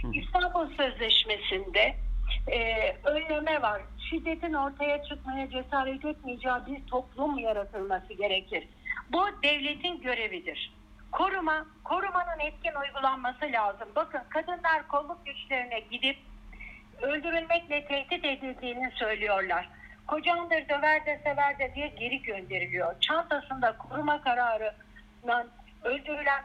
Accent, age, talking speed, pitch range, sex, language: Turkish, 60-79, 100 wpm, 220-305 Hz, female, German